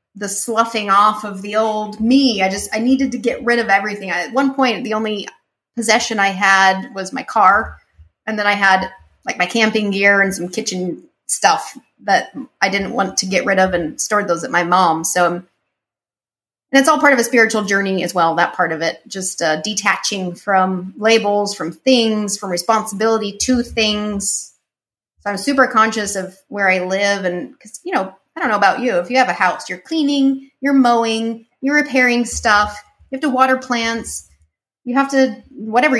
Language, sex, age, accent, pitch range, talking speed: English, female, 30-49, American, 195-250 Hz, 195 wpm